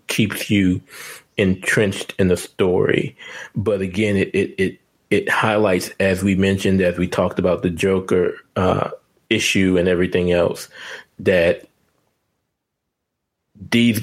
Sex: male